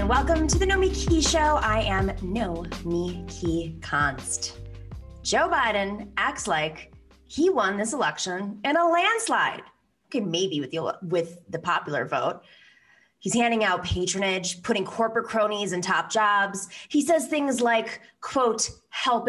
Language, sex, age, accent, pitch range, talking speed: English, female, 20-39, American, 185-285 Hz, 150 wpm